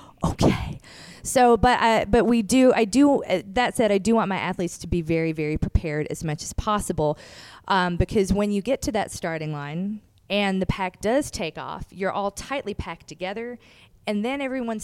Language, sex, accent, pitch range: English, female, American, 165-210 Hz